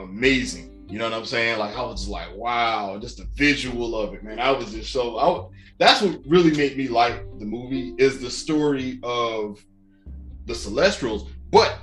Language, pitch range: English, 105-145 Hz